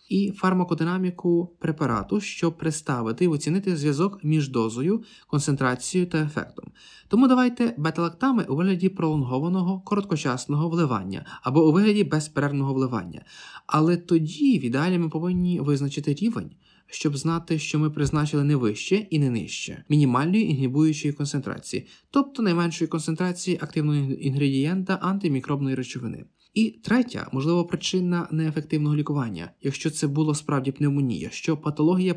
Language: Ukrainian